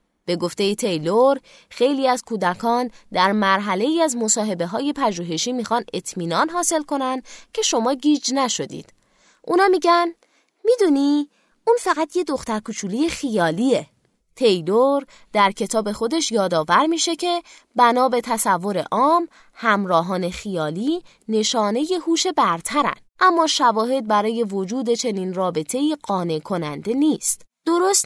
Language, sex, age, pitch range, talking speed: Persian, female, 20-39, 190-285 Hz, 115 wpm